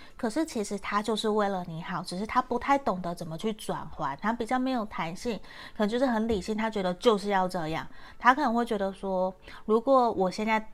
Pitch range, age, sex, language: 180-215 Hz, 30-49, female, Chinese